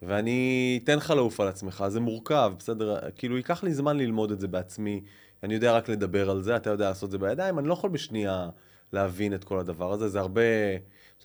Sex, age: male, 20-39